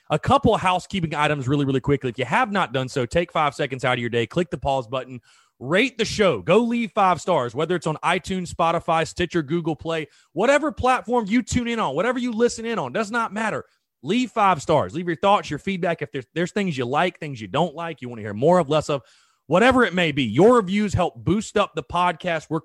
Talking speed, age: 245 wpm, 30-49